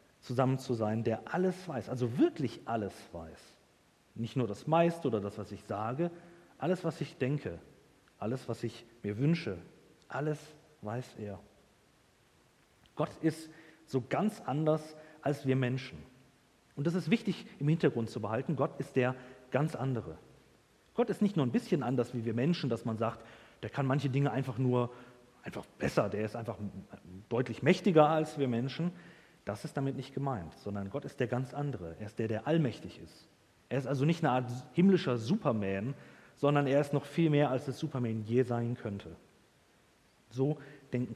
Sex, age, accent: male, 40-59, German